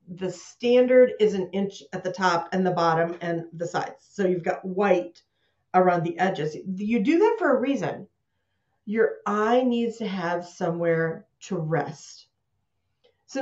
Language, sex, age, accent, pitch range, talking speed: English, female, 50-69, American, 165-210 Hz, 160 wpm